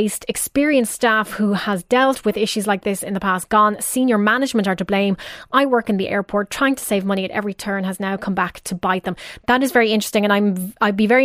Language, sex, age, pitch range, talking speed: English, female, 20-39, 200-230 Hz, 245 wpm